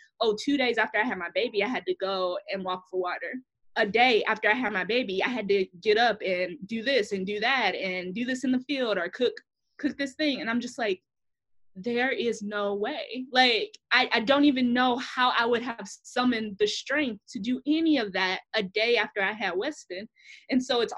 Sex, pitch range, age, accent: female, 200-260 Hz, 20-39, American